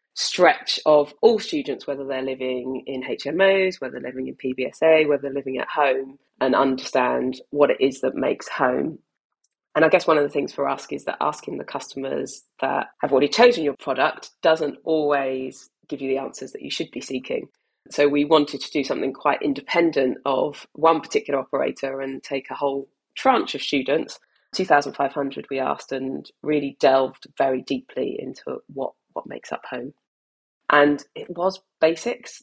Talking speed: 180 wpm